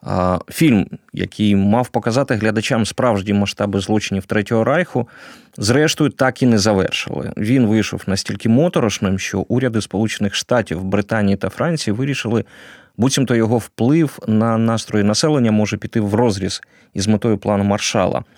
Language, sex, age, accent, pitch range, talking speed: Ukrainian, male, 30-49, native, 100-130 Hz, 135 wpm